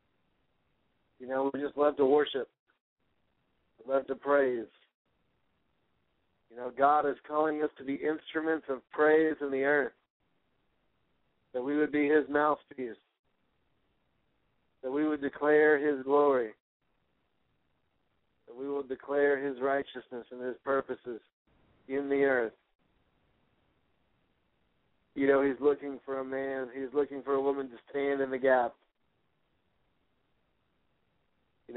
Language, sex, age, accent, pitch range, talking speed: English, male, 60-79, American, 130-145 Hz, 125 wpm